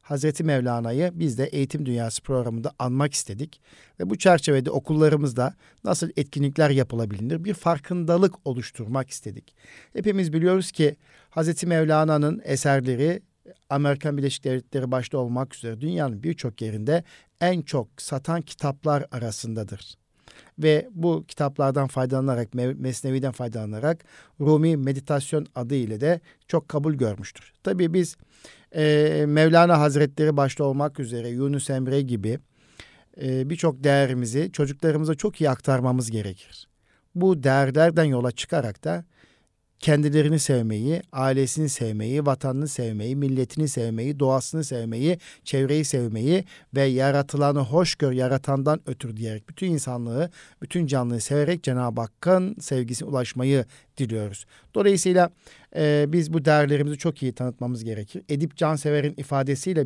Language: Turkish